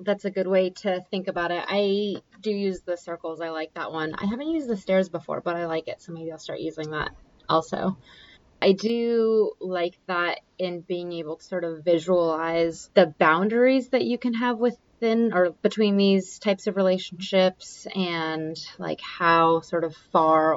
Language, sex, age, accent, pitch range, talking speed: English, female, 20-39, American, 165-195 Hz, 185 wpm